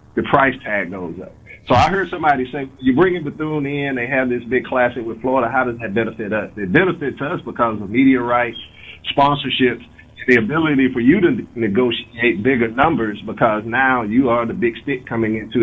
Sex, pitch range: male, 110-135 Hz